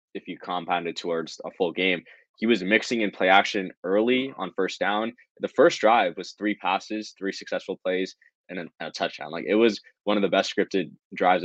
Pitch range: 90-105 Hz